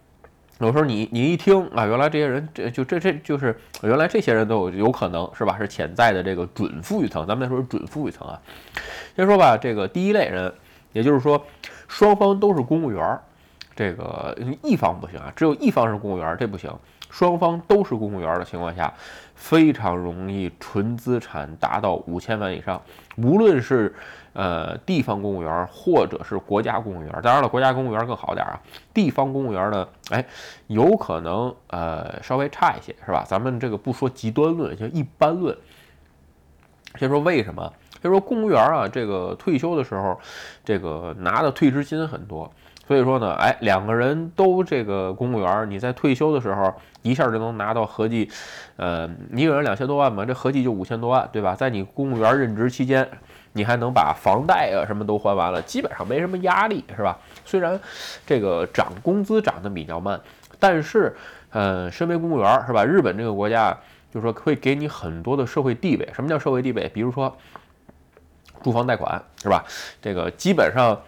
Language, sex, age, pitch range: Chinese, male, 20-39, 95-145 Hz